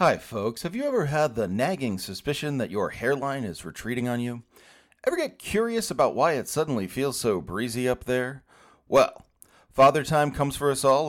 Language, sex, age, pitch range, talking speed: English, male, 40-59, 115-180 Hz, 190 wpm